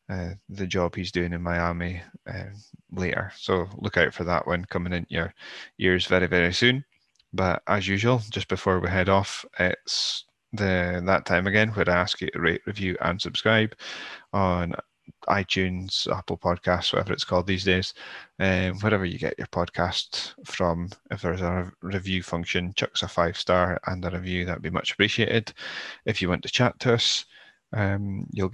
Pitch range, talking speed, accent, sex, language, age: 90-105 Hz, 180 wpm, British, male, English, 20-39